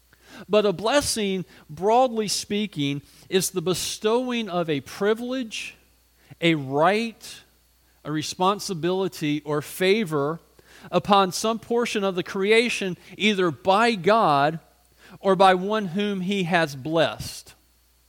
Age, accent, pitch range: 40-59, American, 145-205 Hz